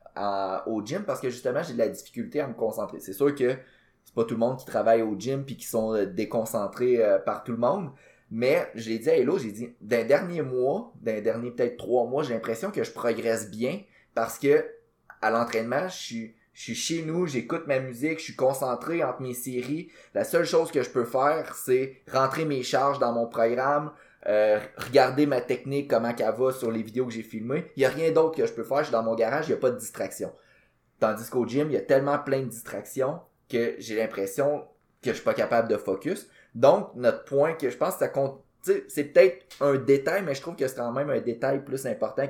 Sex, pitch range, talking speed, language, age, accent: male, 115-145 Hz, 235 wpm, French, 20-39, Canadian